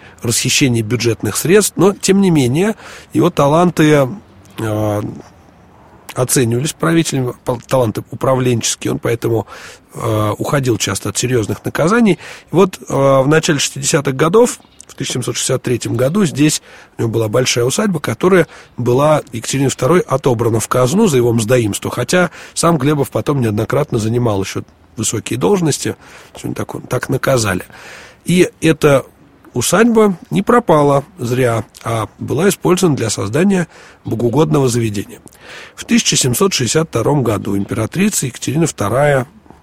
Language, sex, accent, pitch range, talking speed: Russian, male, native, 110-155 Hz, 120 wpm